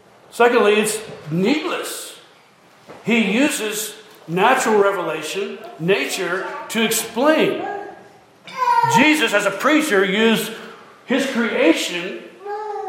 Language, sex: English, male